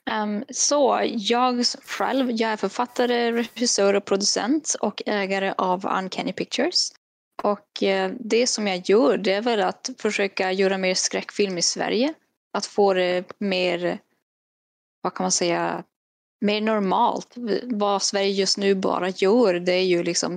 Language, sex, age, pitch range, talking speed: Swedish, female, 10-29, 185-220 Hz, 155 wpm